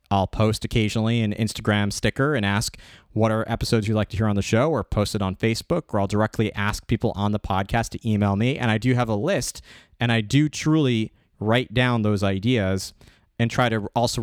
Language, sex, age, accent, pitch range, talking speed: English, male, 30-49, American, 100-115 Hz, 220 wpm